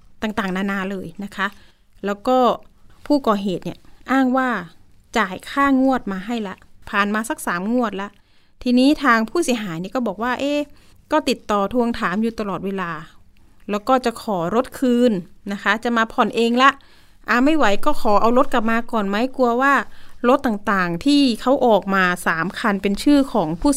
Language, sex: Thai, female